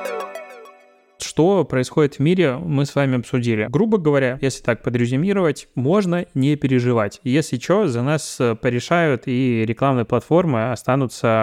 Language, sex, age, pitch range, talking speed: Russian, male, 20-39, 120-150 Hz, 130 wpm